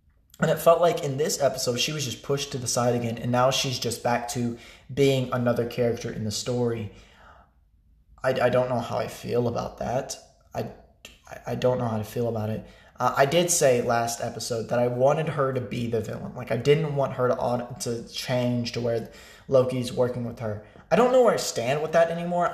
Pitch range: 115-145 Hz